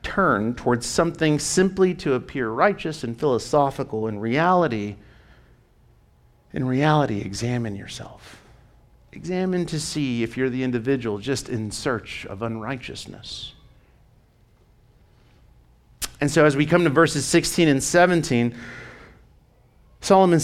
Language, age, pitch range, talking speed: English, 50-69, 125-195 Hz, 110 wpm